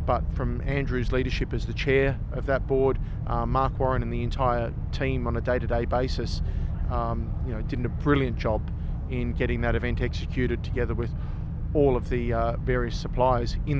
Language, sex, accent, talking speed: English, male, Australian, 185 wpm